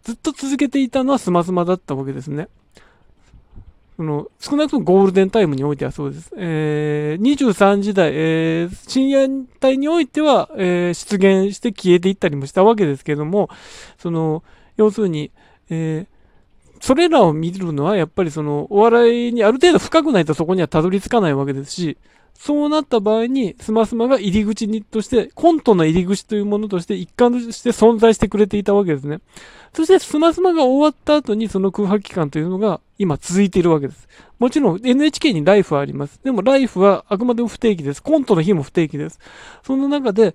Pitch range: 170-245 Hz